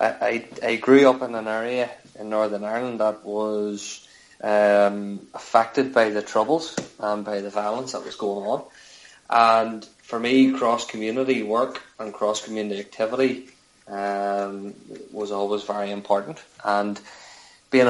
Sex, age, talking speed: male, 20-39, 135 wpm